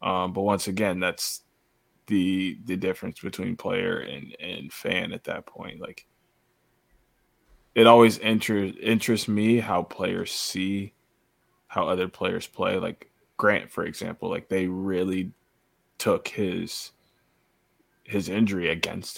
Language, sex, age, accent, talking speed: English, male, 20-39, American, 130 wpm